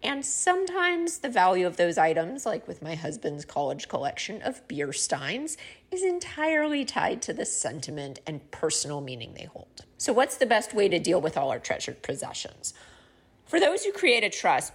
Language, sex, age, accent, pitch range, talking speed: English, female, 30-49, American, 160-245 Hz, 185 wpm